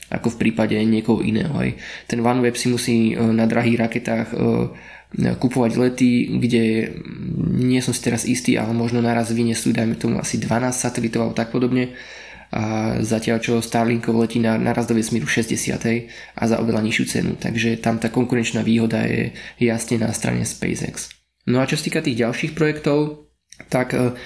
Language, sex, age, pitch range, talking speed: Slovak, male, 20-39, 115-125 Hz, 165 wpm